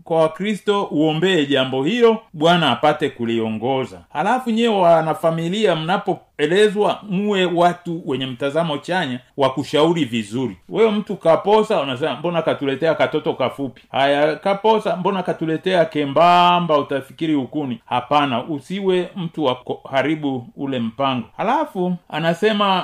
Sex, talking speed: male, 120 wpm